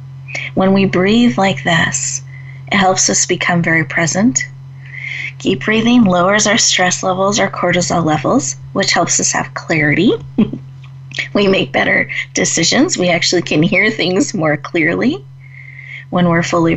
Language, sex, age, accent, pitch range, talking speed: English, female, 30-49, American, 135-185 Hz, 140 wpm